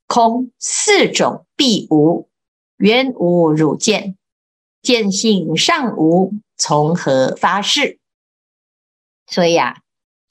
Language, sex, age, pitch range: Chinese, female, 50-69, 170-260 Hz